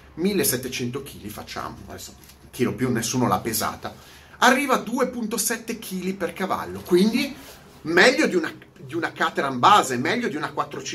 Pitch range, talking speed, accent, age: 120-195 Hz, 150 wpm, native, 30-49